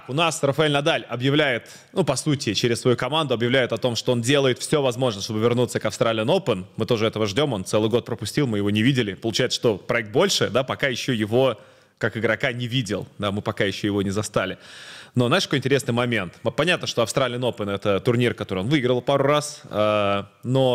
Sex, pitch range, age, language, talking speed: male, 110-140 Hz, 20-39, Russian, 210 wpm